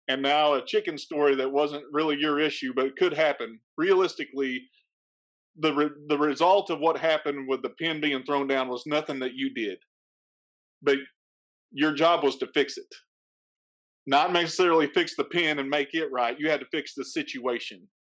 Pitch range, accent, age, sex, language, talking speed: 140-185 Hz, American, 40-59, male, English, 180 wpm